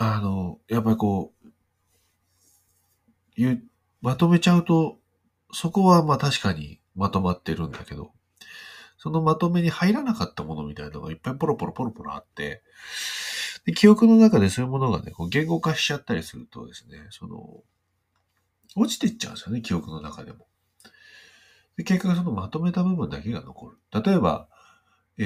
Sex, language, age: male, Japanese, 40-59